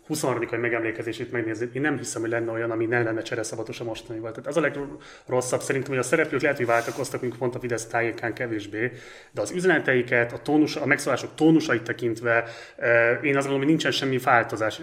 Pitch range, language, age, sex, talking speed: 120-145 Hz, Hungarian, 30-49, male, 200 wpm